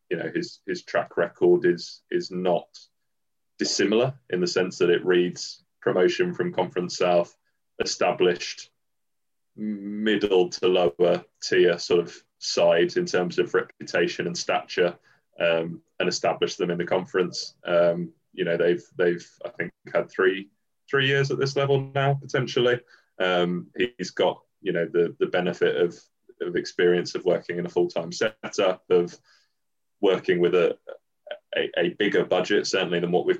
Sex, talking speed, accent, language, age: male, 155 wpm, British, English, 20-39